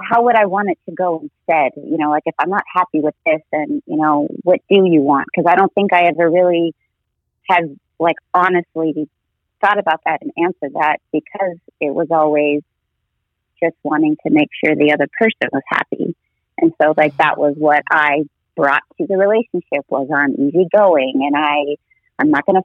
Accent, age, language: American, 30-49, English